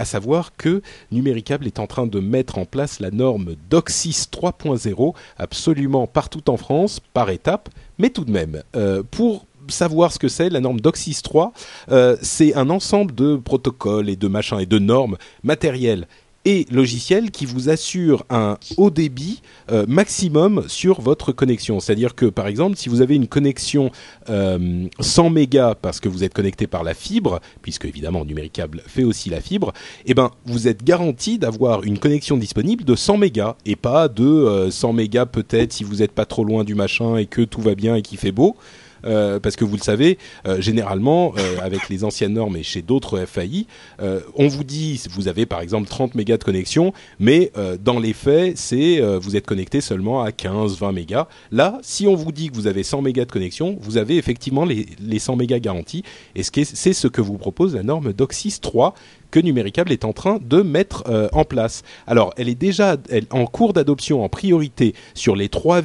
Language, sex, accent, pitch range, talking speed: French, male, French, 105-150 Hz, 200 wpm